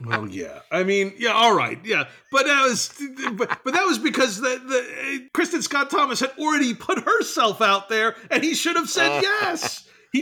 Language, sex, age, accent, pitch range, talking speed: English, male, 40-59, American, 160-255 Hz, 200 wpm